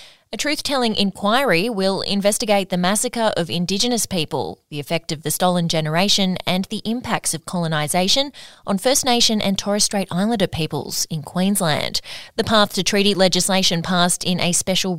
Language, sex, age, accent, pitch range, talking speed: English, female, 20-39, Australian, 165-205 Hz, 160 wpm